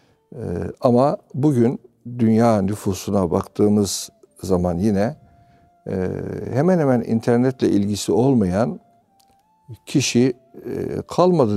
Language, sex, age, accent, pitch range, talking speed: Turkish, male, 60-79, native, 100-125 Hz, 90 wpm